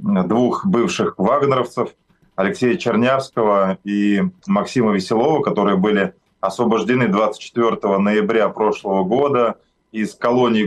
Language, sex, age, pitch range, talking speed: Russian, male, 20-39, 100-125 Hz, 95 wpm